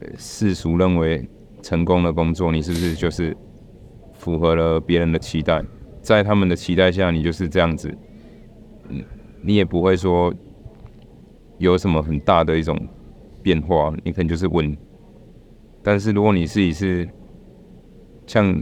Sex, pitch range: male, 80-95 Hz